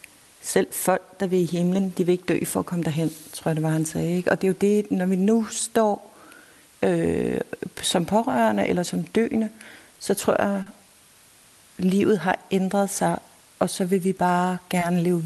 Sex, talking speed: female, 195 wpm